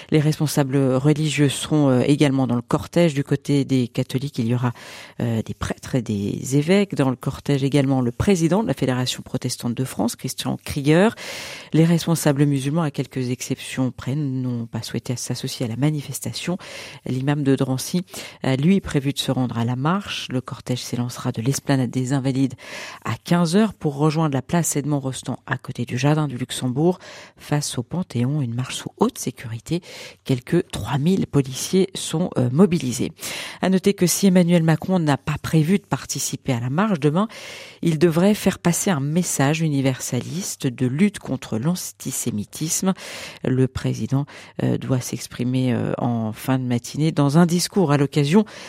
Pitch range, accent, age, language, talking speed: 130-170 Hz, French, 50-69, French, 165 wpm